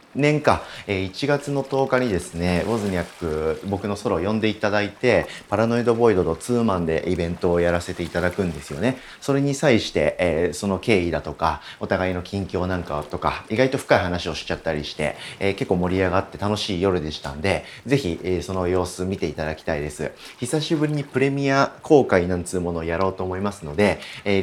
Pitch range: 85-110 Hz